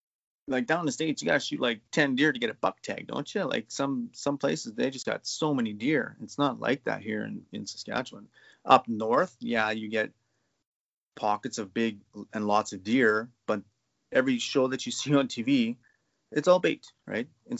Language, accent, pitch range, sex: English, American, 105-120 Hz, male